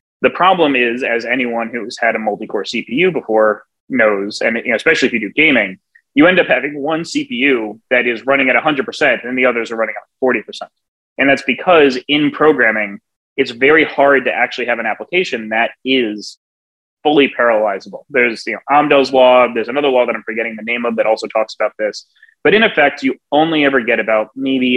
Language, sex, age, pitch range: English, male, 30-49, 110-140 Hz